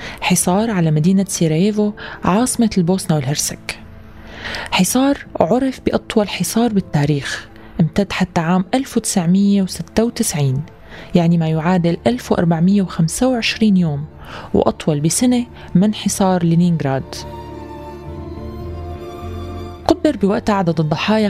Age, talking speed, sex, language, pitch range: 20-39, 85 wpm, female, Arabic, 165-215 Hz